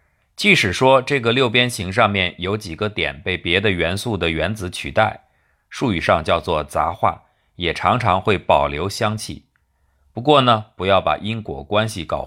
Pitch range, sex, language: 85-110 Hz, male, Chinese